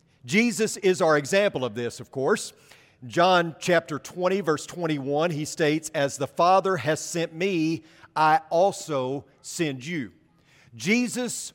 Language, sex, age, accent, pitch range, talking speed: English, male, 40-59, American, 155-190 Hz, 135 wpm